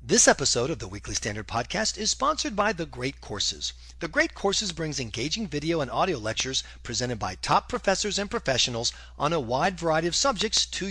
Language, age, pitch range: English, 40-59, 110-175 Hz